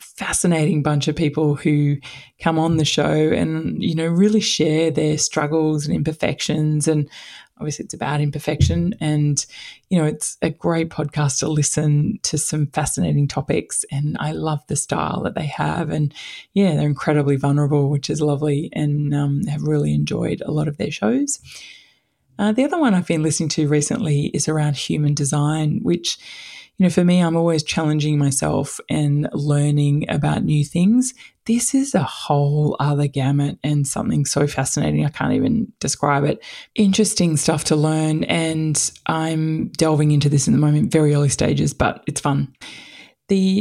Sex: female